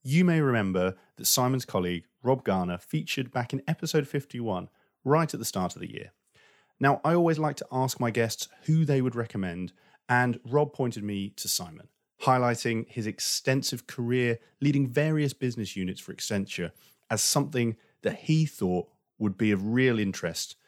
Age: 30-49